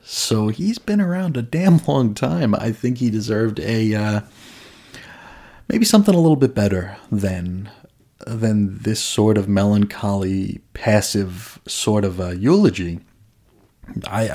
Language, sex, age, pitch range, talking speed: English, male, 30-49, 100-125 Hz, 135 wpm